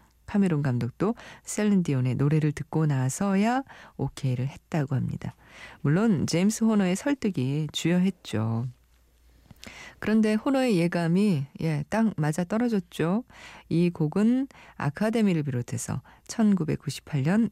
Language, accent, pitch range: Korean, native, 135-200 Hz